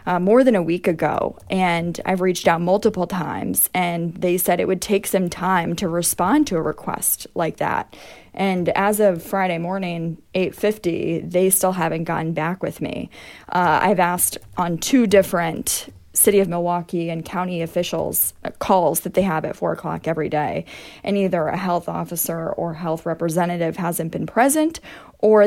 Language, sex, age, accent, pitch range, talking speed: English, female, 20-39, American, 170-205 Hz, 170 wpm